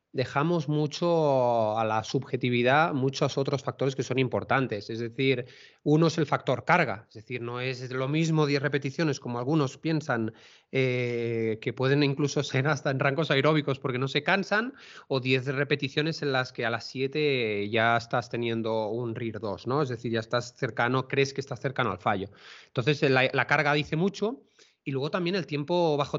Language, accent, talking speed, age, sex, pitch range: Spanish, Spanish, 185 wpm, 30-49, male, 125-155 Hz